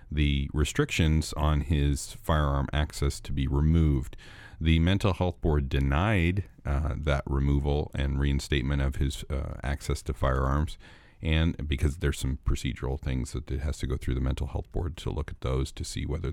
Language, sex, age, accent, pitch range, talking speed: English, male, 40-59, American, 70-85 Hz, 175 wpm